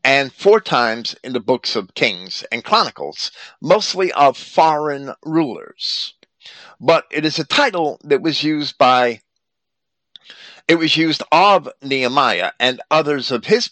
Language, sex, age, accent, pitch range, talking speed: English, male, 50-69, American, 120-170 Hz, 140 wpm